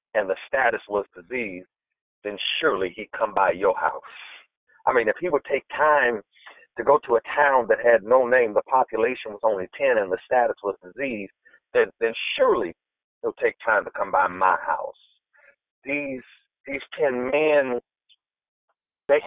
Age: 50-69